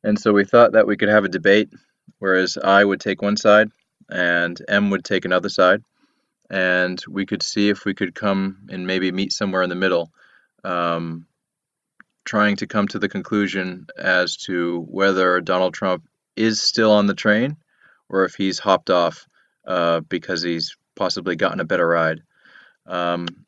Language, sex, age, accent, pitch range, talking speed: English, male, 20-39, American, 90-105 Hz, 175 wpm